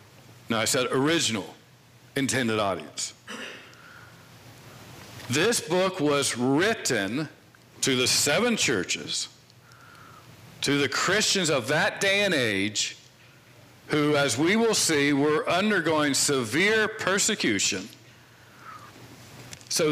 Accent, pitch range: American, 125-185 Hz